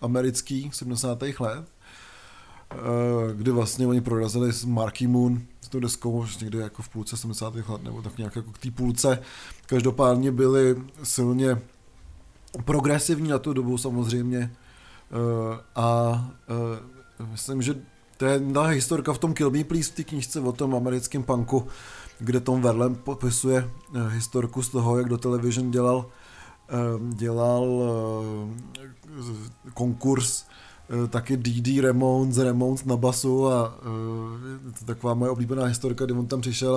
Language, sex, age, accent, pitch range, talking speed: Czech, male, 20-39, native, 120-135 Hz, 140 wpm